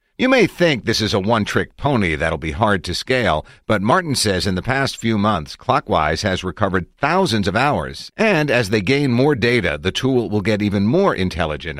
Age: 50-69